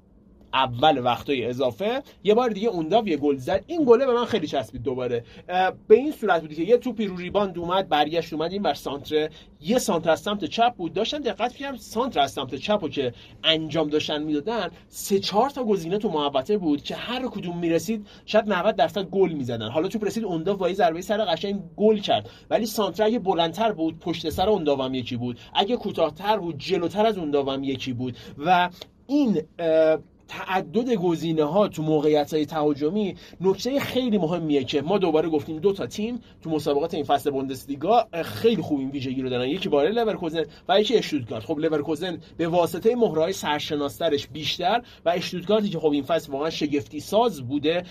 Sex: male